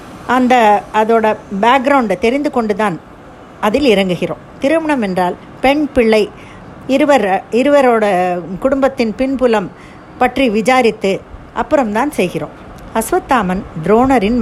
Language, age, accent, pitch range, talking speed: Tamil, 50-69, native, 190-255 Hz, 85 wpm